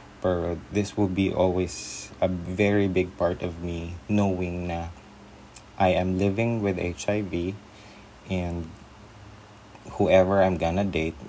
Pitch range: 80-100 Hz